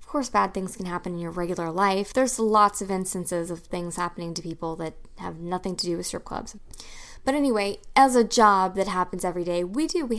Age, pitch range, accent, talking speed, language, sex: 20-39, 180-225 Hz, American, 230 wpm, English, female